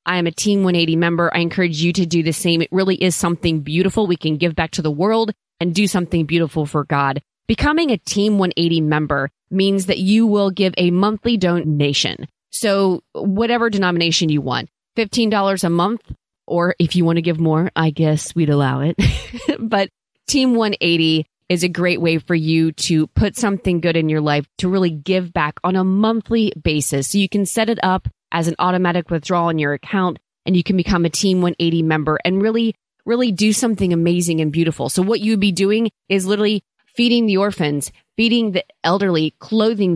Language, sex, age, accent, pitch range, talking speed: English, female, 20-39, American, 160-200 Hz, 195 wpm